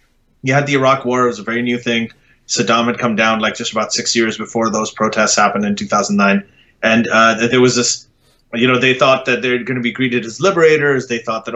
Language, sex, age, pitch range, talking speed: English, male, 30-49, 115-140 Hz, 230 wpm